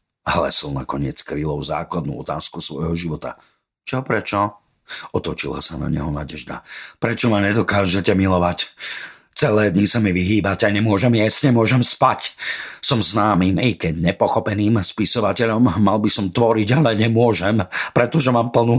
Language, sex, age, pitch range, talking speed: Slovak, male, 50-69, 80-115 Hz, 135 wpm